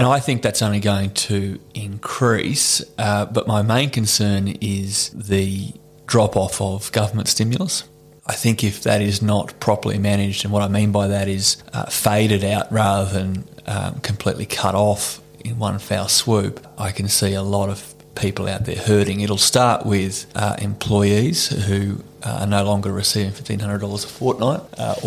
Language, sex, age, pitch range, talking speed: English, male, 20-39, 100-115 Hz, 170 wpm